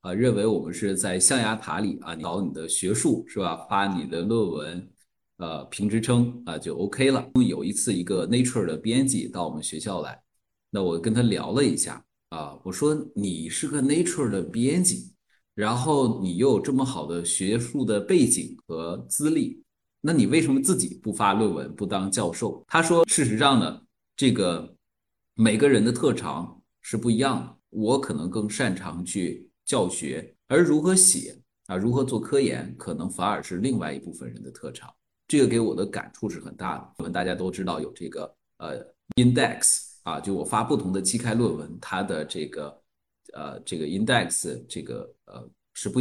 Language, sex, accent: Chinese, male, native